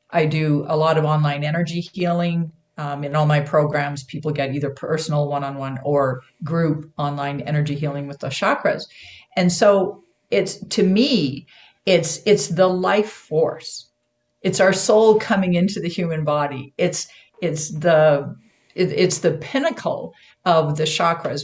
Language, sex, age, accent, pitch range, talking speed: English, female, 50-69, American, 145-175 Hz, 150 wpm